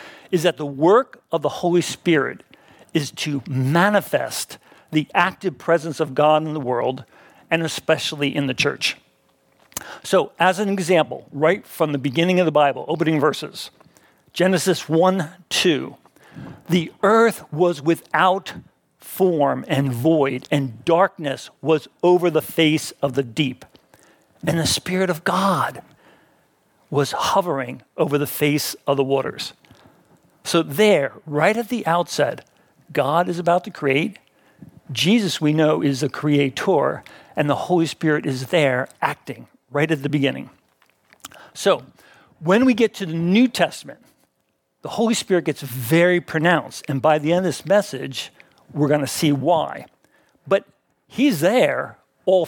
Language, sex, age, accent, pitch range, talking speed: English, male, 50-69, American, 145-180 Hz, 145 wpm